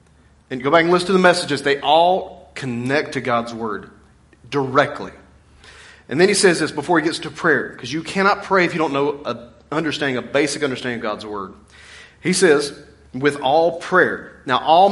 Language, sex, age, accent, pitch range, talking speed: English, male, 30-49, American, 125-175 Hz, 195 wpm